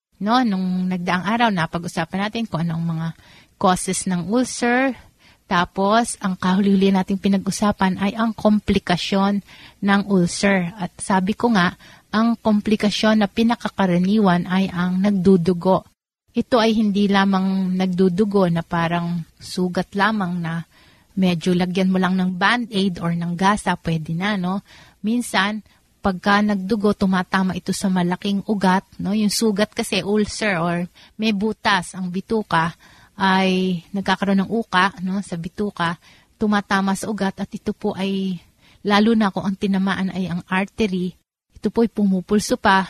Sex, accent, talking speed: female, native, 140 wpm